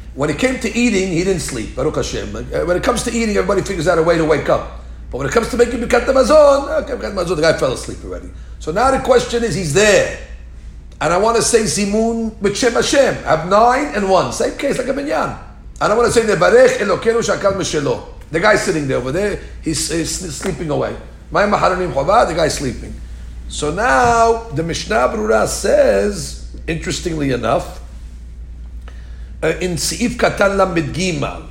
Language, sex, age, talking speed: English, male, 50-69, 180 wpm